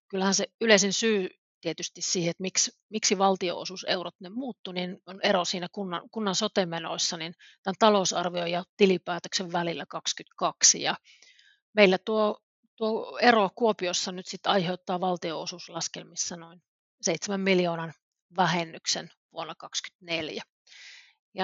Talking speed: 115 wpm